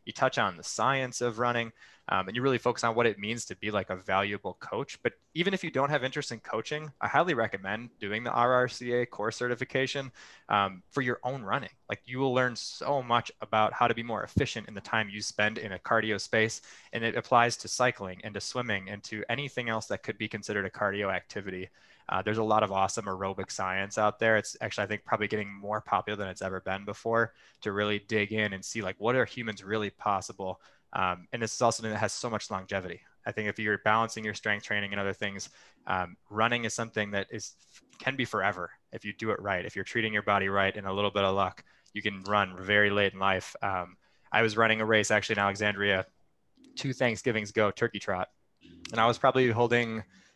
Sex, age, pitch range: male, 20-39, 100-120 Hz